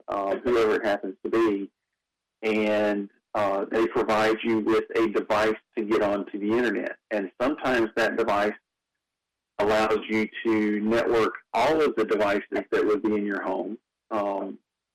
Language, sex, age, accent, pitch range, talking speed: English, male, 40-59, American, 100-110 Hz, 155 wpm